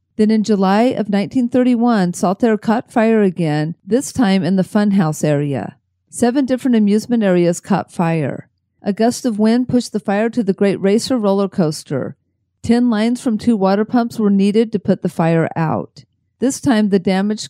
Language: English